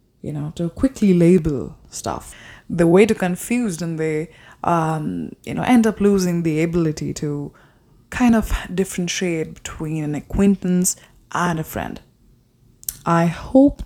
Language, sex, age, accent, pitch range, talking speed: English, female, 20-39, Indian, 160-195 Hz, 140 wpm